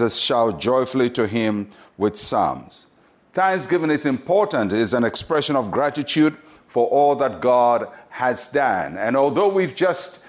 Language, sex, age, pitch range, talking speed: English, male, 60-79, 120-150 Hz, 140 wpm